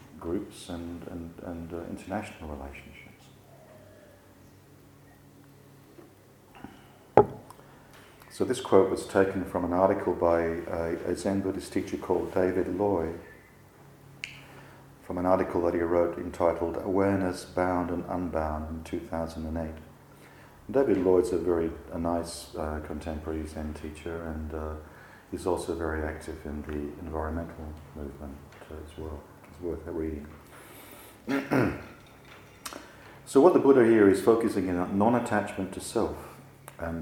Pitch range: 80-95 Hz